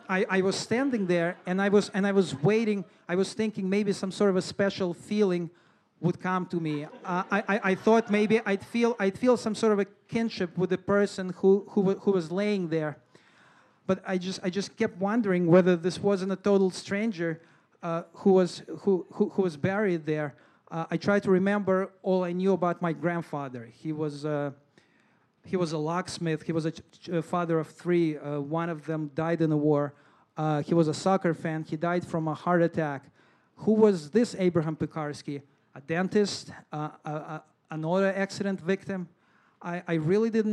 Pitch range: 165-195 Hz